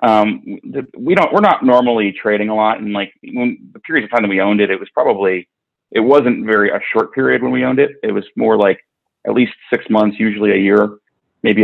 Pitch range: 100-115 Hz